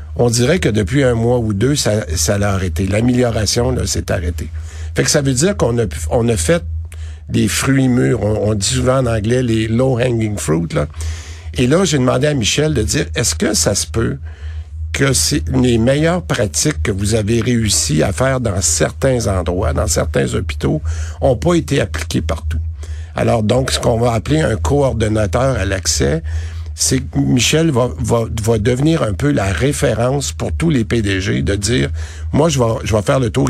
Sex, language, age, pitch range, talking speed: male, French, 60-79, 80-125 Hz, 195 wpm